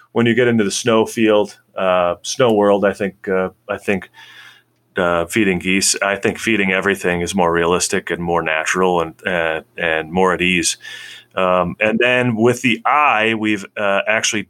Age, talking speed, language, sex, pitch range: 30-49, 180 wpm, English, male, 100-120 Hz